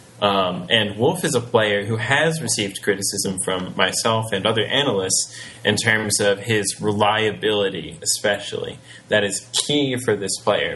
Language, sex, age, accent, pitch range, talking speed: English, male, 20-39, American, 100-125 Hz, 150 wpm